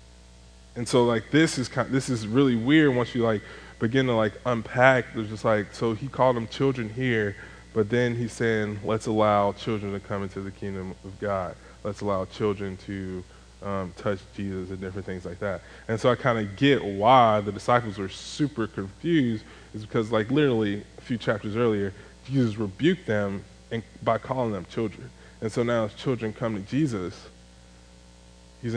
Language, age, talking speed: English, 20-39, 185 wpm